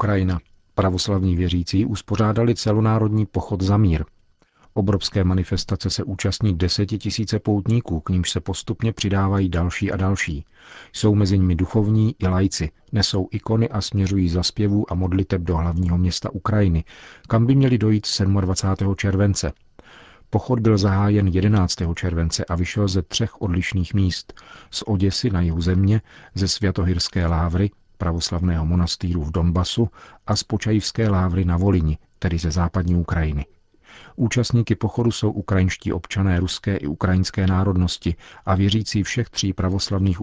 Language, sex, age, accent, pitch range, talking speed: Czech, male, 40-59, native, 90-105 Hz, 140 wpm